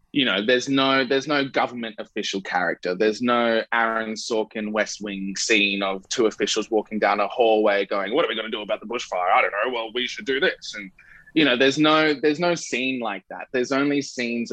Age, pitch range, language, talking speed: 20-39, 95-115 Hz, English, 220 wpm